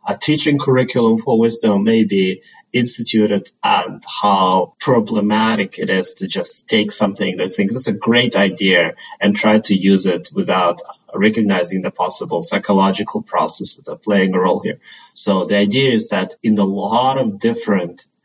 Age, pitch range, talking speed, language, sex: 30-49, 100-135 Hz, 165 wpm, English, male